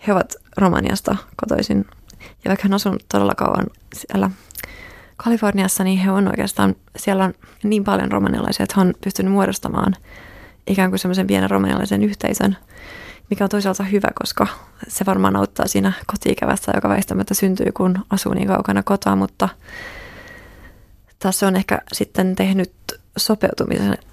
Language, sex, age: Finnish, female, 20-39